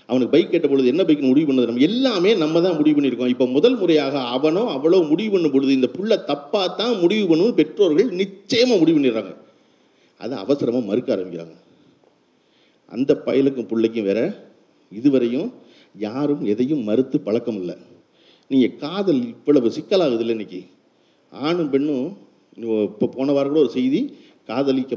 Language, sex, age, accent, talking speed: Tamil, male, 50-69, native, 135 wpm